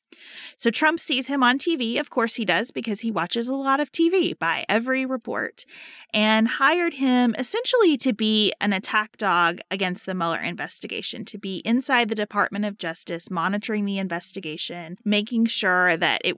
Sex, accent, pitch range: female, American, 180-235 Hz